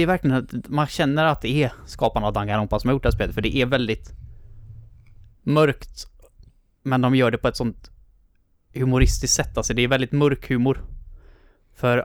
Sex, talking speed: male, 180 wpm